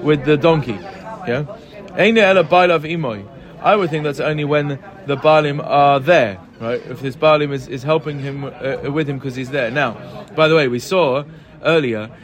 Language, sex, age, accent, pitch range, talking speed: English, male, 30-49, British, 130-160 Hz, 170 wpm